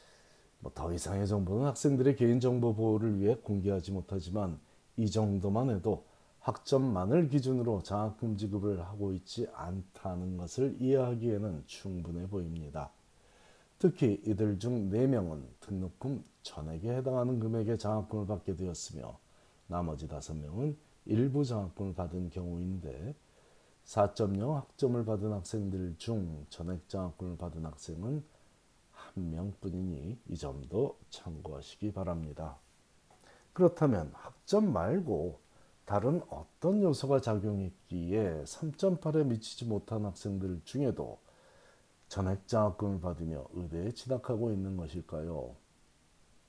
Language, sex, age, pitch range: Korean, male, 40-59, 90-120 Hz